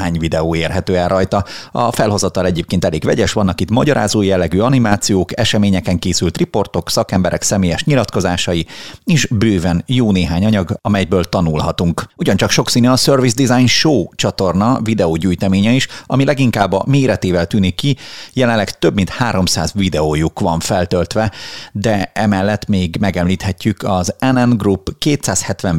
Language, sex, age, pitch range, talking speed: Hungarian, male, 30-49, 90-115 Hz, 135 wpm